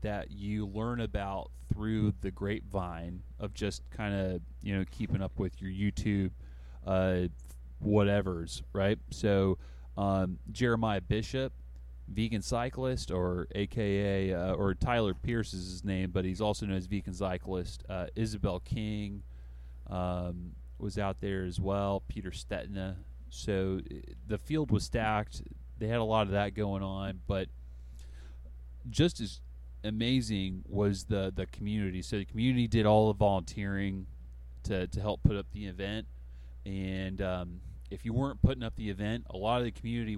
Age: 30-49